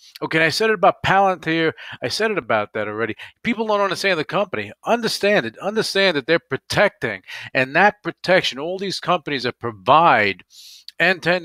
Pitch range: 135-180 Hz